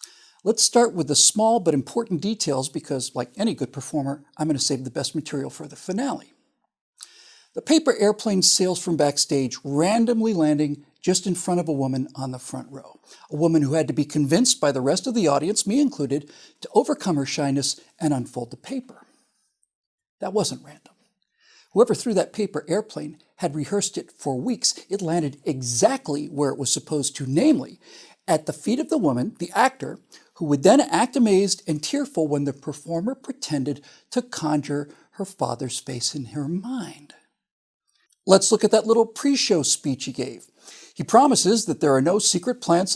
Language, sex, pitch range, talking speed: English, male, 145-225 Hz, 180 wpm